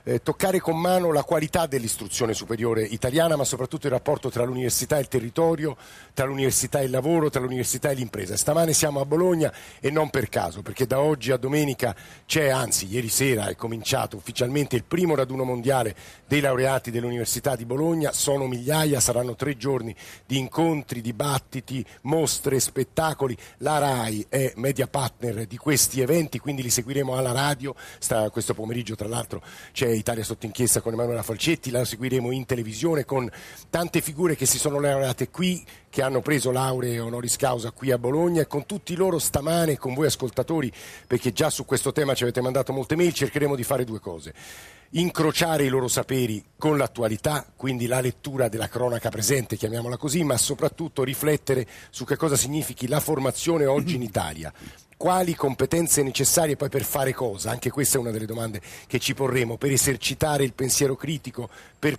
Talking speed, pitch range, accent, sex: 175 wpm, 120-150 Hz, native, male